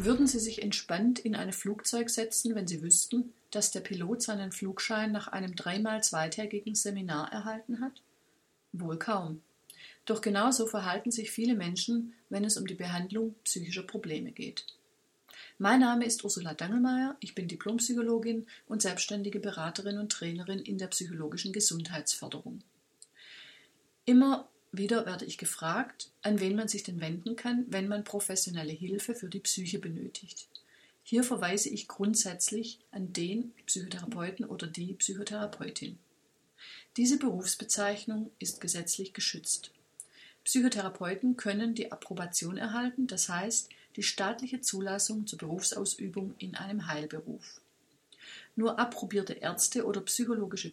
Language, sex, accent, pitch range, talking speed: German, female, German, 185-230 Hz, 130 wpm